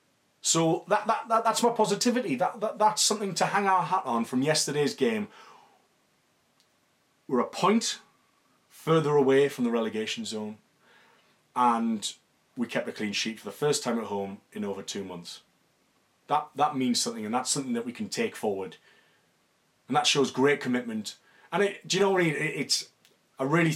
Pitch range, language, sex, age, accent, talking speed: 120-200 Hz, English, male, 30-49, British, 180 wpm